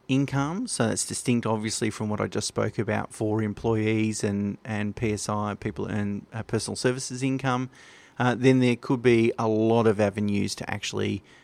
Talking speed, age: 175 wpm, 30-49